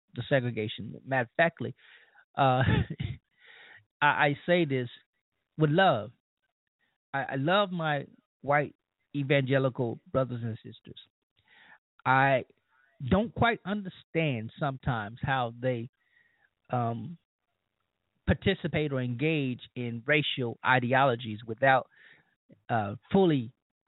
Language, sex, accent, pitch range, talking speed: English, male, American, 125-165 Hz, 95 wpm